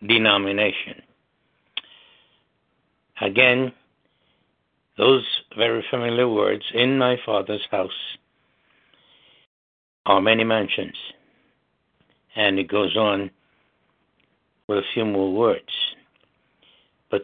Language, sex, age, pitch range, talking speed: English, male, 60-79, 100-125 Hz, 80 wpm